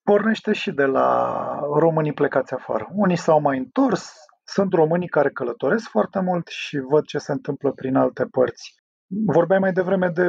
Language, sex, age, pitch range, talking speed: Romanian, male, 30-49, 145-195 Hz, 170 wpm